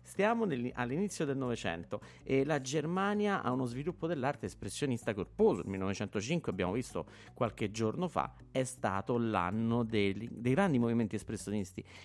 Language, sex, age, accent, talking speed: Italian, male, 50-69, native, 135 wpm